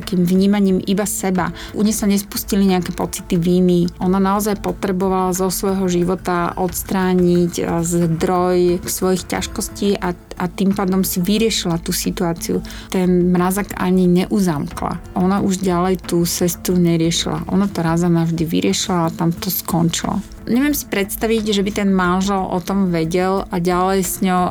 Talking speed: 150 wpm